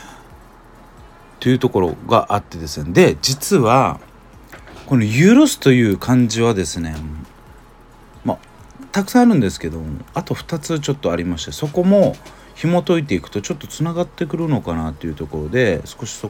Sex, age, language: male, 40-59, Japanese